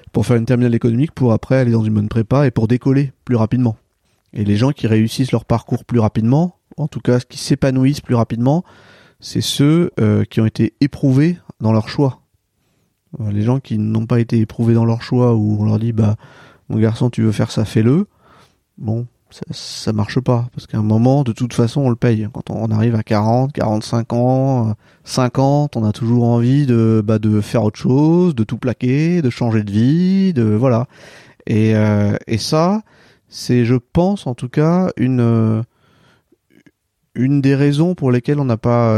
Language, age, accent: French, 30-49, French